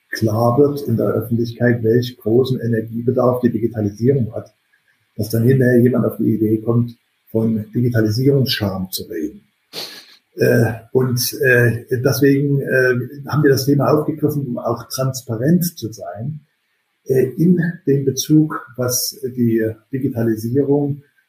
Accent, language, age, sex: German, German, 50-69, male